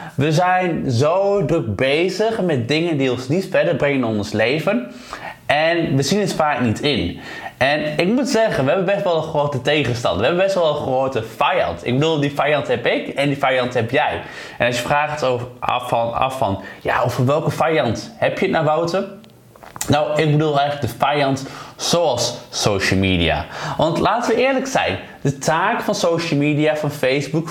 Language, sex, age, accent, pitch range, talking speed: Dutch, male, 20-39, Dutch, 135-180 Hz, 200 wpm